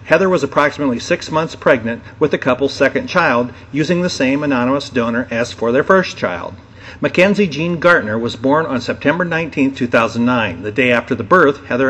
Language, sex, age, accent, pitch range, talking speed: English, male, 50-69, American, 120-150 Hz, 180 wpm